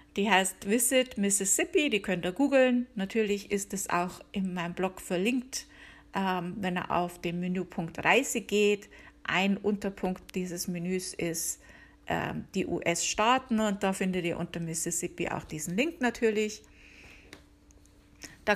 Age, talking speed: 50-69, 140 wpm